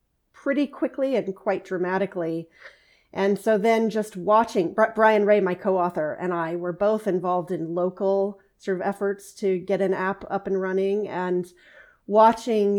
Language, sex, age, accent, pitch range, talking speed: English, female, 30-49, American, 175-205 Hz, 155 wpm